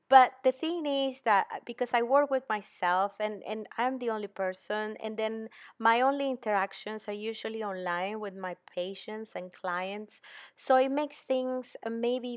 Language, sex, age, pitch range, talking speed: English, female, 20-39, 195-235 Hz, 165 wpm